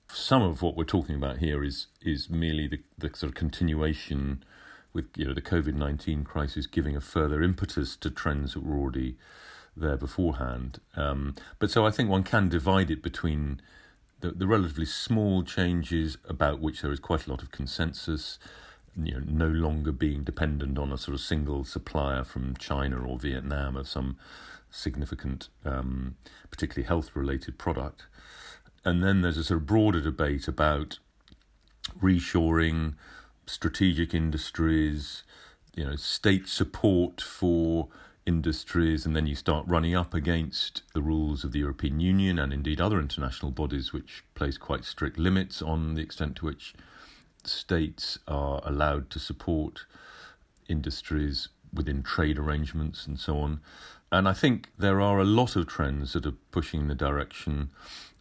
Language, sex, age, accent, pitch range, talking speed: English, male, 40-59, British, 70-85 Hz, 155 wpm